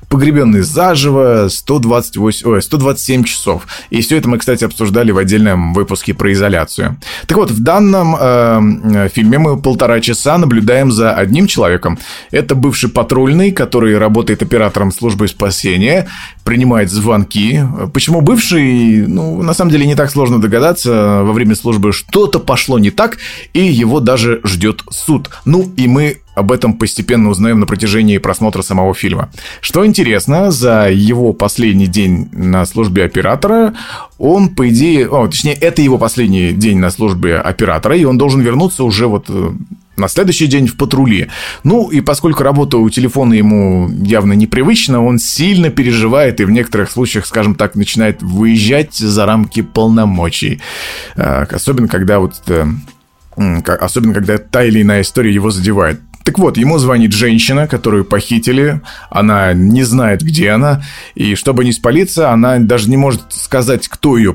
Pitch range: 105-135 Hz